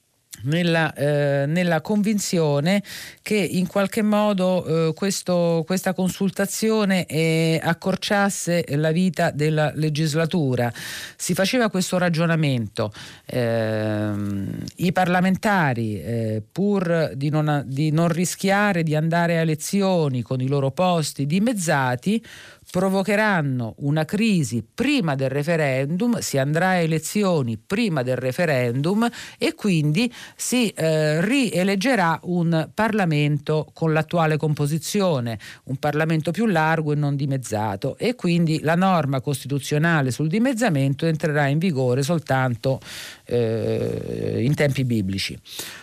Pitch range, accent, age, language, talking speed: 140-180 Hz, native, 50-69, Italian, 110 wpm